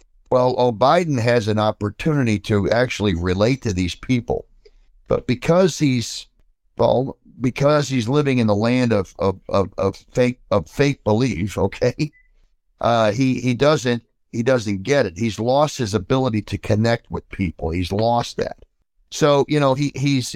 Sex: male